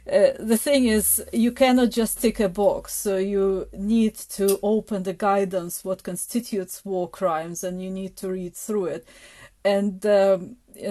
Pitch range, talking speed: 185-215 Hz, 170 wpm